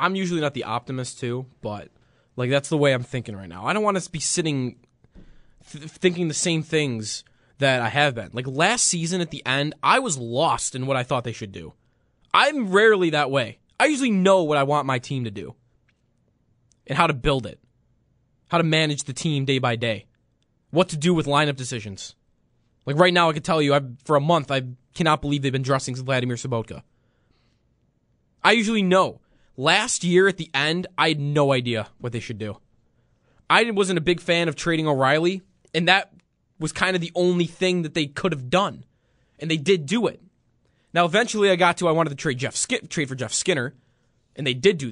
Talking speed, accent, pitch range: 215 wpm, American, 125-175 Hz